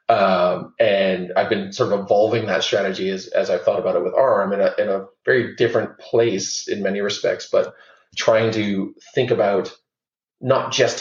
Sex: male